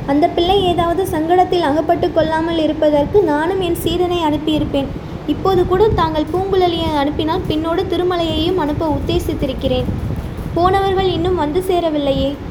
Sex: female